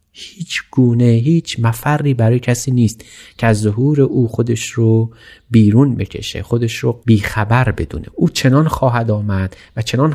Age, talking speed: 30-49, 150 wpm